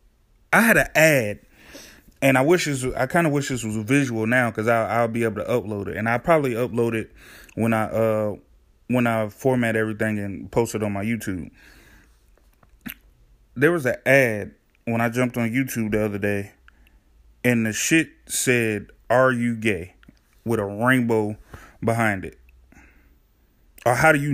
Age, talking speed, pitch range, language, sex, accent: 30-49, 175 wpm, 105-155 Hz, English, male, American